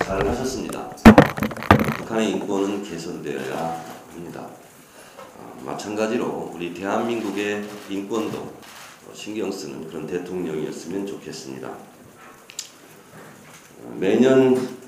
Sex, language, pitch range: male, Korean, 85-120 Hz